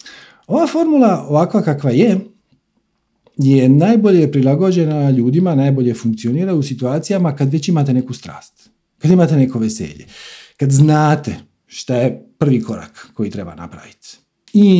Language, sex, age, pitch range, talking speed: Croatian, male, 40-59, 125-190 Hz, 130 wpm